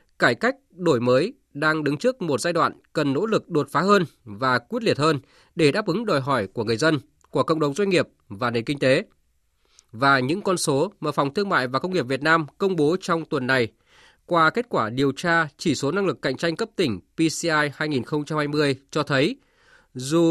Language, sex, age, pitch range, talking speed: Vietnamese, male, 20-39, 135-180 Hz, 215 wpm